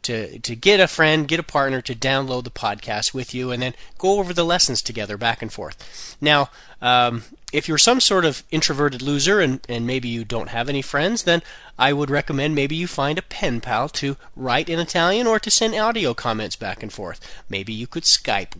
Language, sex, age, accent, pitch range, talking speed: English, male, 30-49, American, 125-170 Hz, 215 wpm